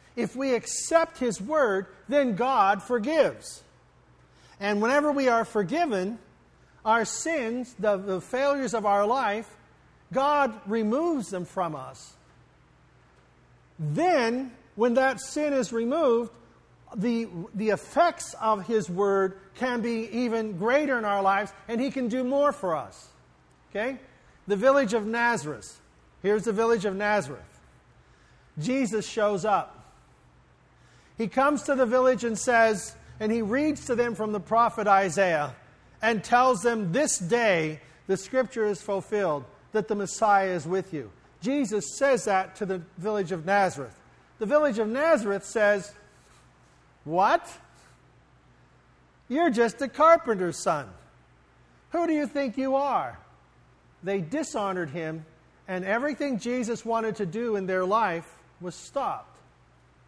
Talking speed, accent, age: 135 wpm, American, 50-69